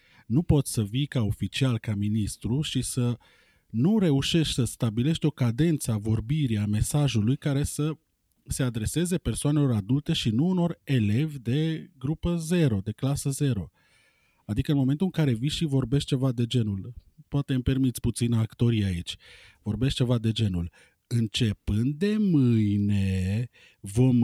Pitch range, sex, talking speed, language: 110-150 Hz, male, 150 wpm, Romanian